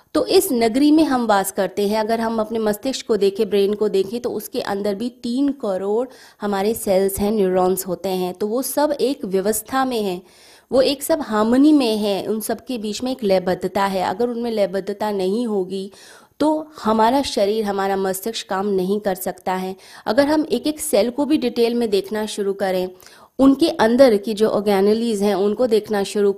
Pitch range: 195-245 Hz